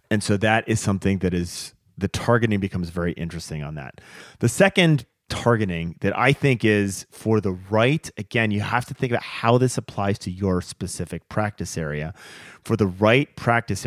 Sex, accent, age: male, American, 30-49